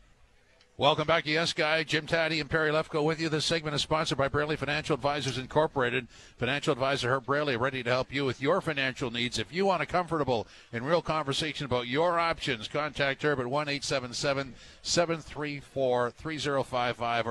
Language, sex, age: English, male, 50-69